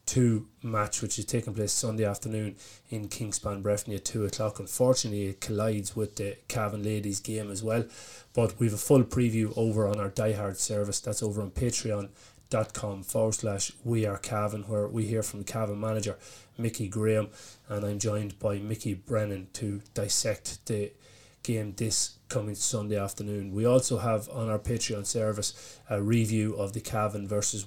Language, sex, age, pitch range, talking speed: English, male, 30-49, 105-115 Hz, 170 wpm